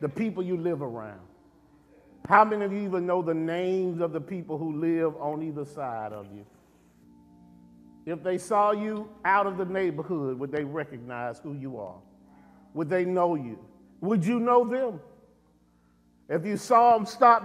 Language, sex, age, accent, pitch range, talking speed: English, male, 50-69, American, 125-195 Hz, 170 wpm